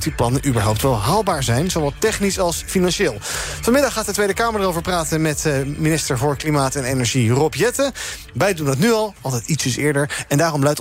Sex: male